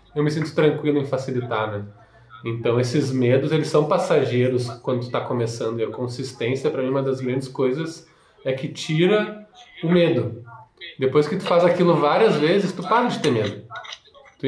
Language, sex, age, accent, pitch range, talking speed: Portuguese, male, 20-39, Brazilian, 130-175 Hz, 180 wpm